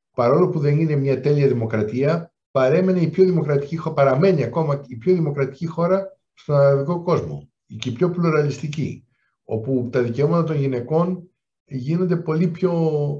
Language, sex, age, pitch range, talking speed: Greek, male, 60-79, 125-175 Hz, 130 wpm